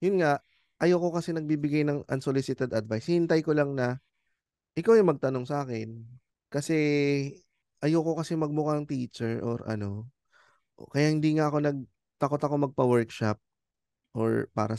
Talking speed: 135 wpm